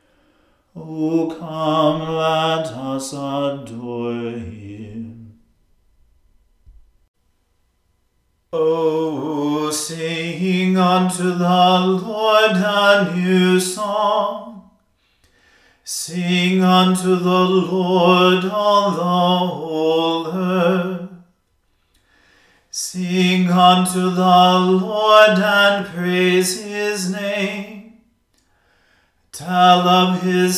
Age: 40-59